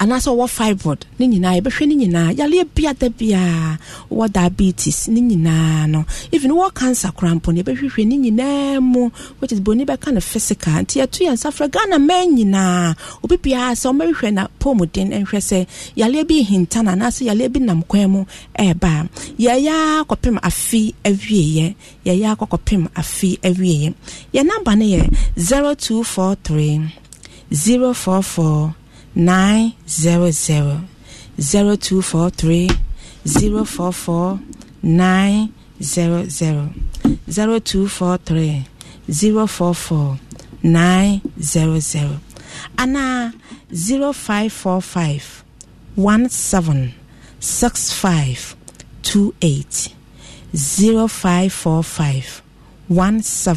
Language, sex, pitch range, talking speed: English, female, 165-230 Hz, 105 wpm